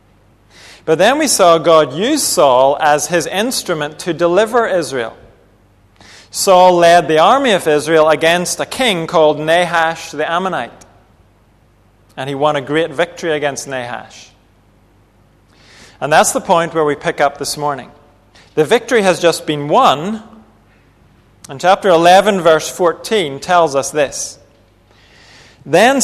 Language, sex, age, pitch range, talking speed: English, male, 40-59, 120-180 Hz, 135 wpm